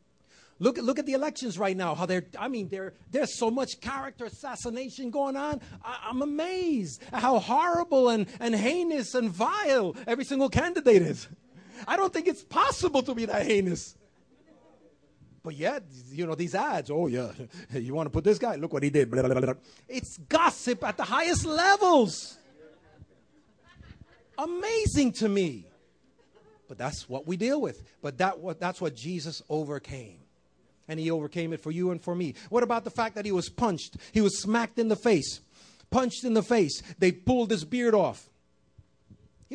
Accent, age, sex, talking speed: American, 30-49, male, 170 wpm